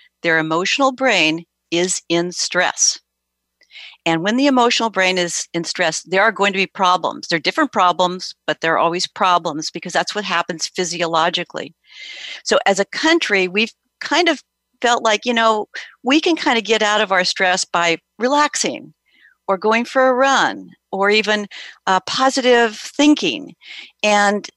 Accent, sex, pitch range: American, female, 180-240 Hz